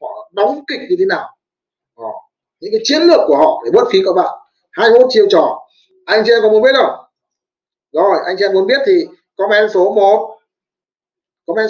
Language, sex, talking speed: Vietnamese, male, 200 wpm